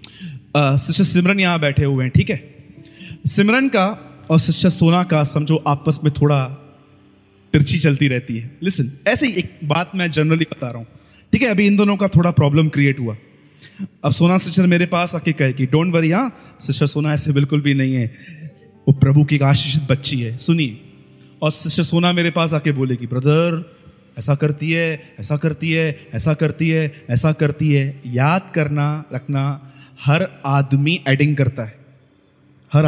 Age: 30-49